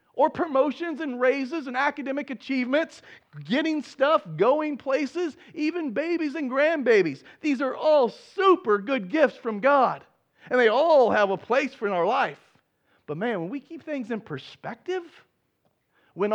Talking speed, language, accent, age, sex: 150 wpm, English, American, 40-59, male